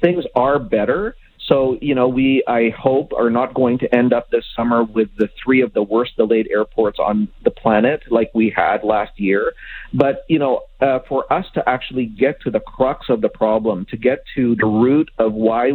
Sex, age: male, 40-59